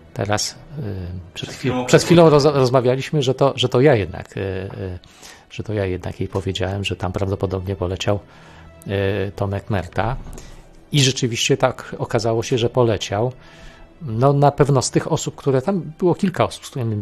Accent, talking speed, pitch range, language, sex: native, 155 wpm, 100-130 Hz, Polish, male